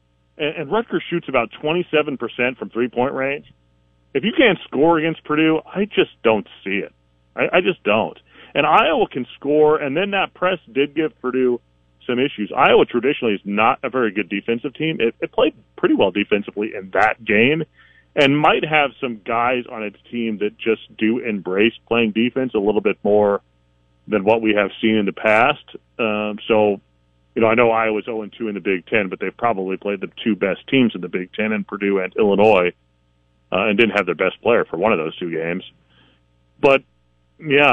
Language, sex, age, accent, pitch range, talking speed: English, male, 40-59, American, 80-130 Hz, 195 wpm